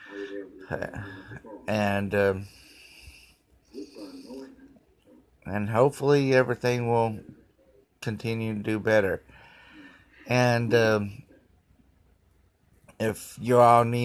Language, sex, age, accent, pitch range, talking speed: English, male, 30-49, American, 105-120 Hz, 65 wpm